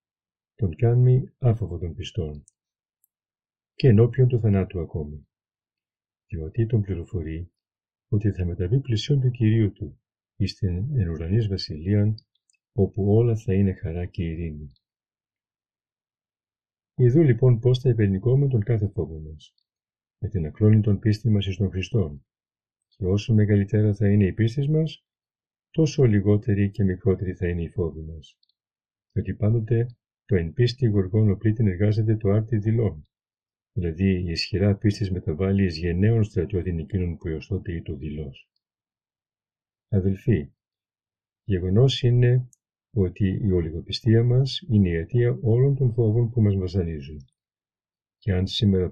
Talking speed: 130 wpm